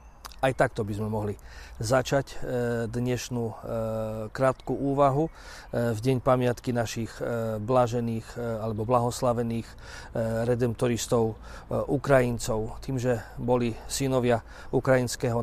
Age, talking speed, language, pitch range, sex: 40-59, 90 wpm, Slovak, 115-135 Hz, male